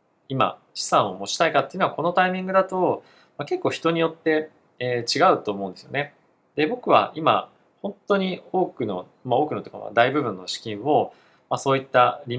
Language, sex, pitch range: Japanese, male, 110-165 Hz